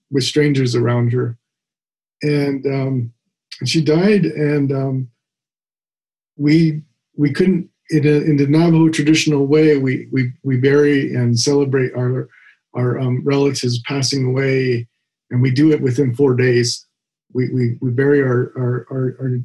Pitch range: 125-150 Hz